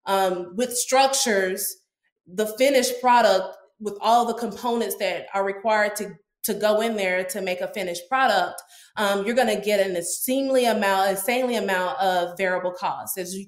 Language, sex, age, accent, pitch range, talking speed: English, female, 20-39, American, 195-240 Hz, 170 wpm